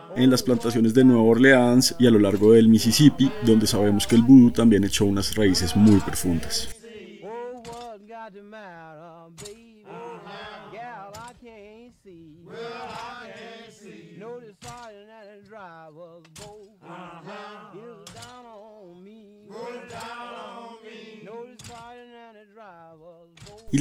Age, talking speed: 30-49, 60 wpm